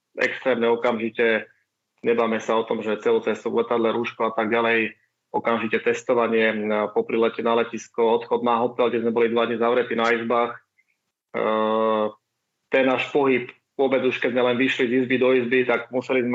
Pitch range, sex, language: 115-125 Hz, male, Slovak